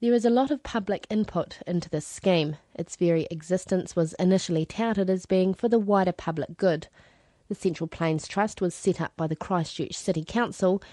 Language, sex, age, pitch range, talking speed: English, female, 30-49, 160-200 Hz, 190 wpm